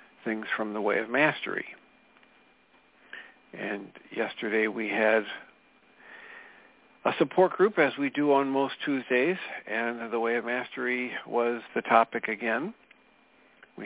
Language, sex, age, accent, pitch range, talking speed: English, male, 50-69, American, 115-130 Hz, 125 wpm